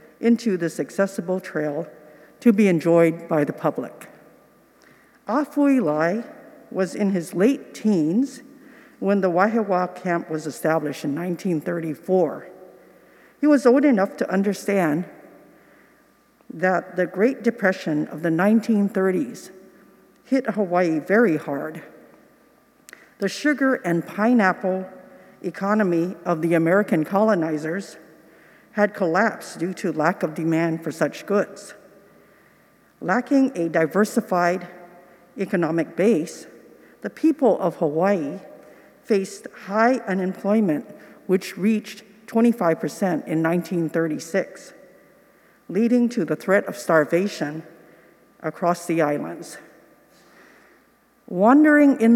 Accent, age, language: American, 50-69, English